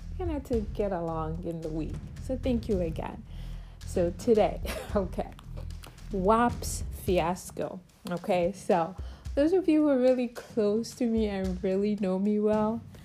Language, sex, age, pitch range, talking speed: English, female, 30-49, 175-225 Hz, 145 wpm